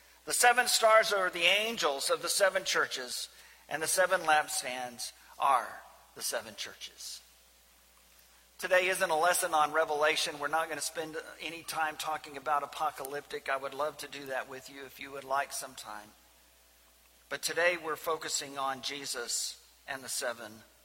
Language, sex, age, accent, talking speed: English, male, 50-69, American, 160 wpm